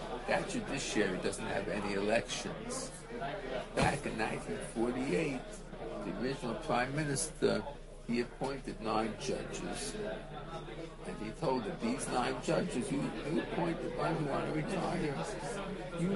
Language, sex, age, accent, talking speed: English, male, 50-69, American, 125 wpm